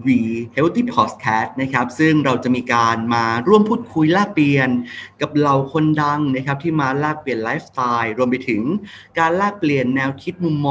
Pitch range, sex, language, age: 120-155 Hz, male, Thai, 30-49